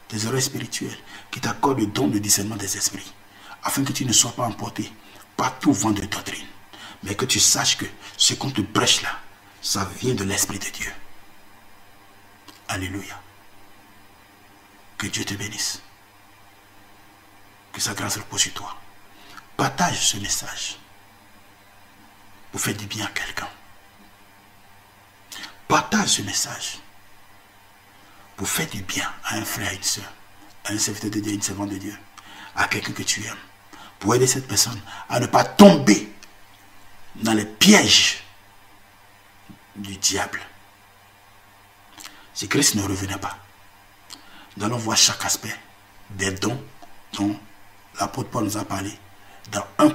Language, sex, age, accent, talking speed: French, male, 60-79, French, 145 wpm